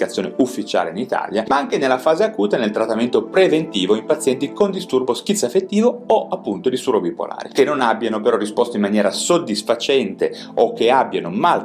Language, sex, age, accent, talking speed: Italian, male, 30-49, native, 165 wpm